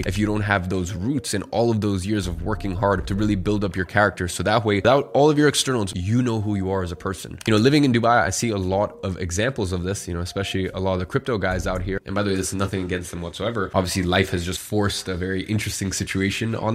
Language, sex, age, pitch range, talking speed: English, male, 20-39, 95-110 Hz, 285 wpm